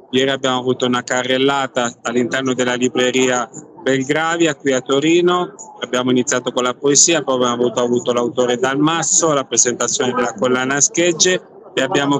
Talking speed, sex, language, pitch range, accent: 145 wpm, male, Italian, 125-155 Hz, native